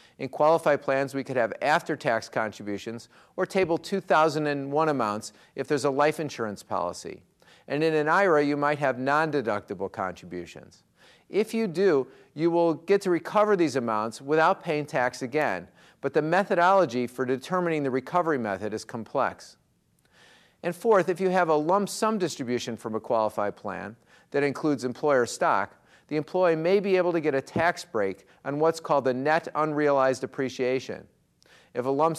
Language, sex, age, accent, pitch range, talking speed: English, male, 50-69, American, 125-165 Hz, 165 wpm